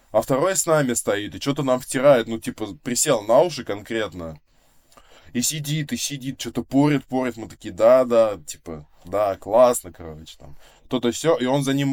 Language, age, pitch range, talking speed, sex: Russian, 20-39, 105-135 Hz, 180 wpm, male